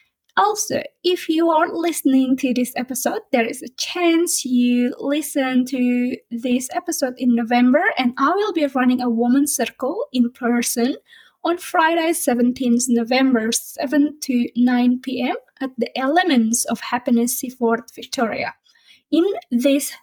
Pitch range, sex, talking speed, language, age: 240-300 Hz, female, 140 wpm, English, 20-39